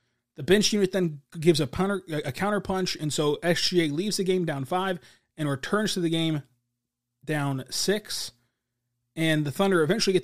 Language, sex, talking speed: English, male, 175 wpm